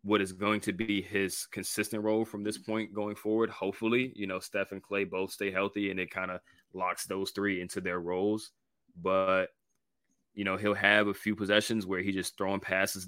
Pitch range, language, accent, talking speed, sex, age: 90-105 Hz, English, American, 205 wpm, male, 20-39